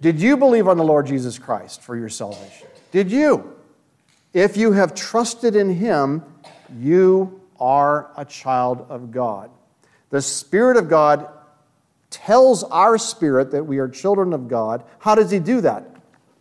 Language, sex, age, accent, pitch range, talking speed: English, male, 50-69, American, 135-200 Hz, 155 wpm